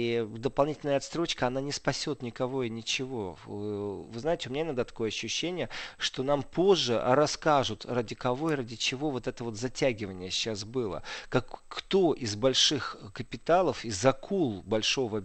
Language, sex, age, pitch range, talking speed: Russian, male, 40-59, 115-140 Hz, 145 wpm